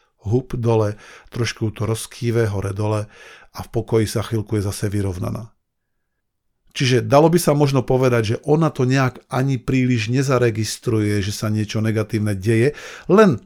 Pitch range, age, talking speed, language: 110-135 Hz, 50-69, 150 wpm, Slovak